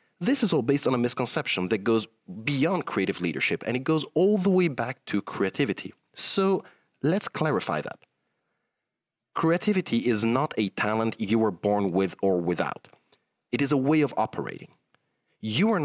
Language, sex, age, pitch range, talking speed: English, male, 30-49, 105-155 Hz, 165 wpm